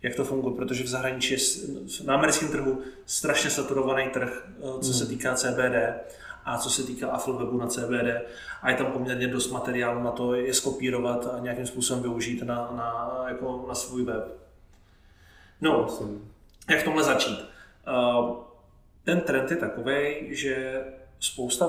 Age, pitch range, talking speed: 30-49, 120-130 Hz, 150 wpm